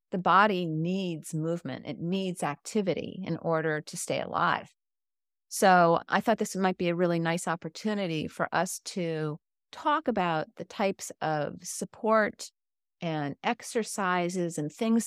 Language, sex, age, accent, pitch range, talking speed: English, female, 40-59, American, 160-200 Hz, 140 wpm